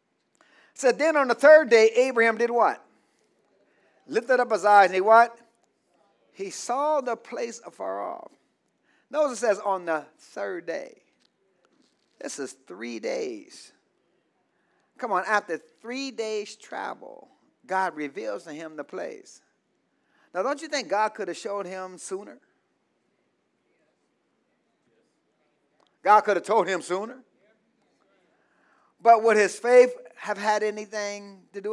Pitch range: 195-270 Hz